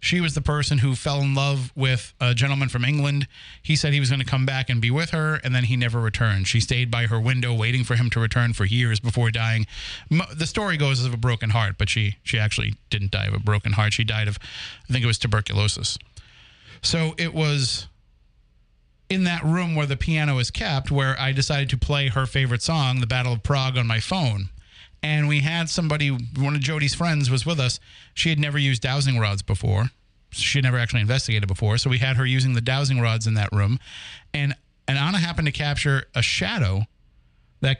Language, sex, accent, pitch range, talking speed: English, male, American, 110-140 Hz, 220 wpm